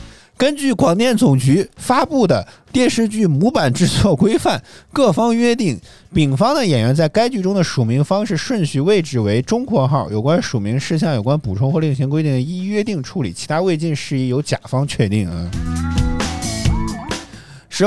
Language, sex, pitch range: Chinese, male, 110-170 Hz